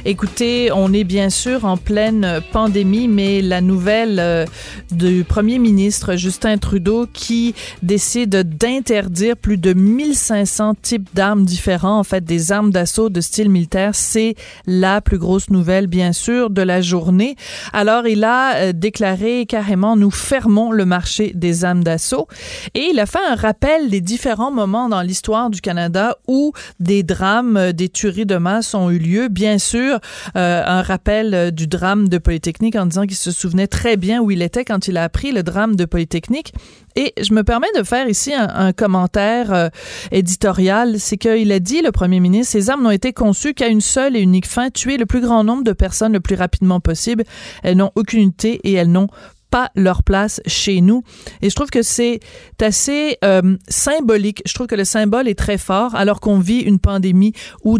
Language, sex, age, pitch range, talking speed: French, female, 30-49, 185-225 Hz, 190 wpm